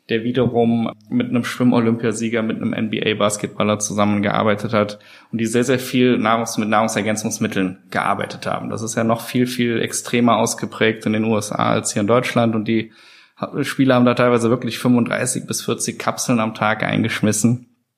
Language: German